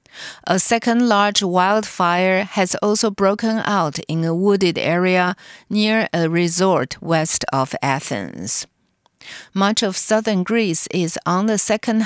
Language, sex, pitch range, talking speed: English, female, 165-205 Hz, 130 wpm